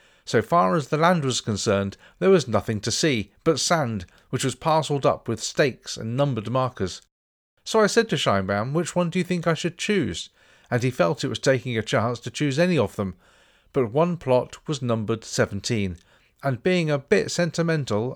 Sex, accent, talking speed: male, British, 200 wpm